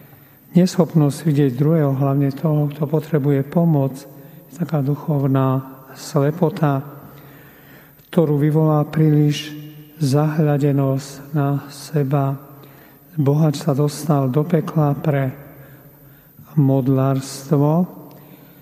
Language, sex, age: Slovak, male, 50-69